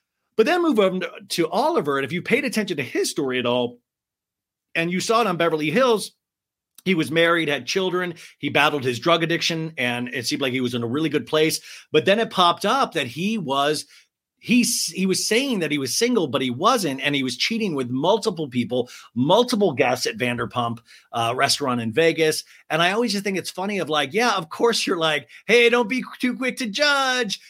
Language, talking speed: English, 215 wpm